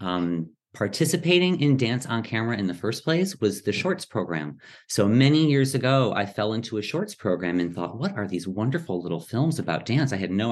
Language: English